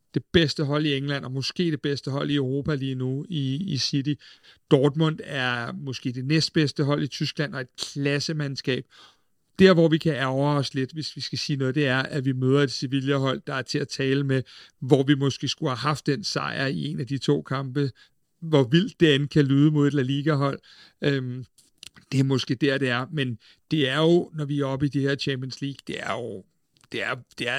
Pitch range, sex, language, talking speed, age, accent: 135-155 Hz, male, Danish, 225 wpm, 60-79, native